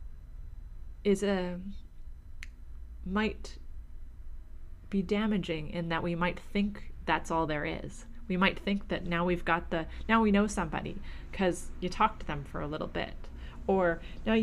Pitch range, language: 140-220 Hz, English